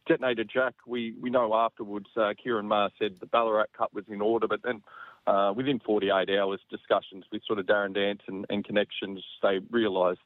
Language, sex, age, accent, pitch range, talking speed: English, male, 30-49, Australian, 100-115 Hz, 195 wpm